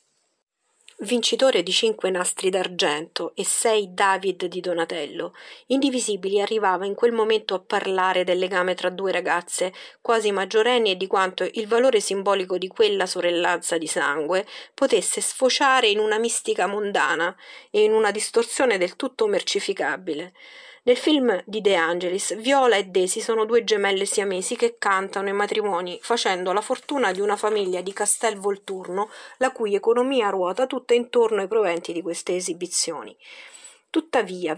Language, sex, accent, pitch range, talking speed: Italian, female, native, 185-265 Hz, 150 wpm